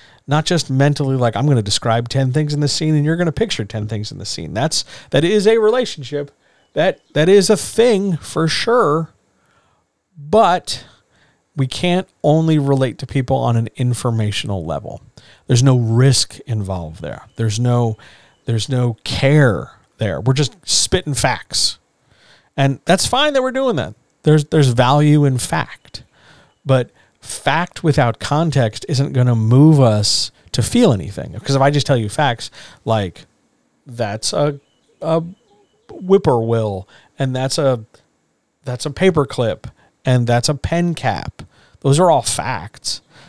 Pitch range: 115-150 Hz